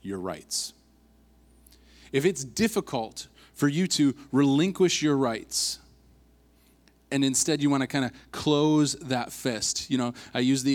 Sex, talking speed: male, 145 wpm